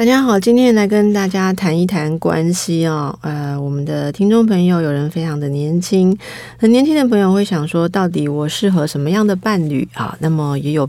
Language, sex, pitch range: Chinese, female, 135-180 Hz